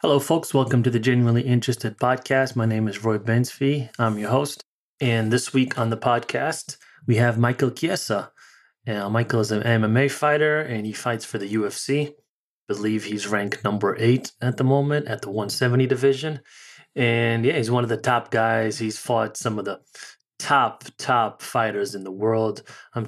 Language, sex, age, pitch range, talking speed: English, male, 30-49, 110-125 Hz, 180 wpm